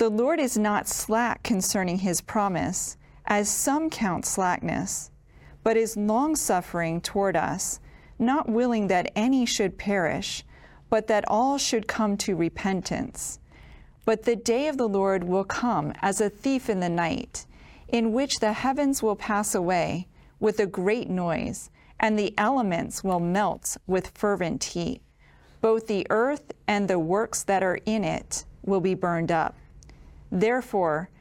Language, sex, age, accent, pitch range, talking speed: English, female, 40-59, American, 180-230 Hz, 150 wpm